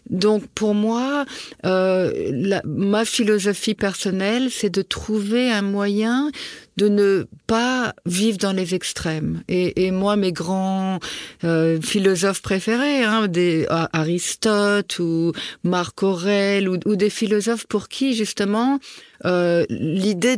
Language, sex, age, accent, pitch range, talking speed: French, female, 50-69, French, 185-225 Hz, 130 wpm